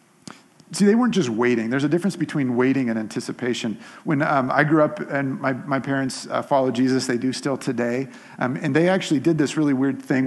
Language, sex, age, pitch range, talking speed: English, male, 40-59, 135-195 Hz, 215 wpm